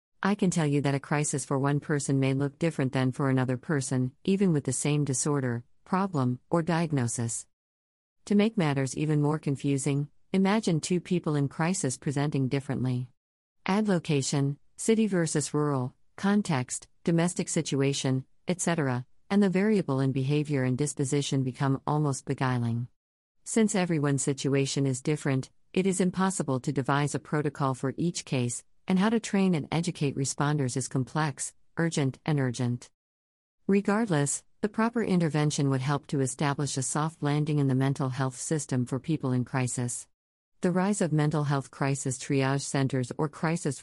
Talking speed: 155 wpm